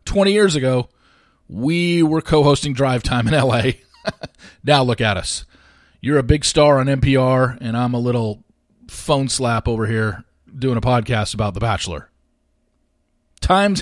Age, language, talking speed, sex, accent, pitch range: 40-59, English, 150 wpm, male, American, 105-145 Hz